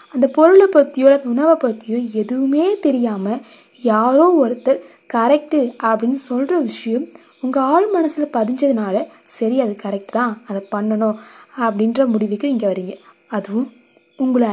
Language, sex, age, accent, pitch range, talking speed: Tamil, female, 20-39, native, 225-305 Hz, 120 wpm